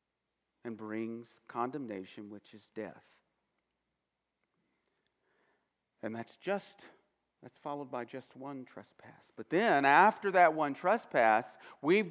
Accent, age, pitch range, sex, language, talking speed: American, 50-69, 160-245 Hz, male, English, 110 wpm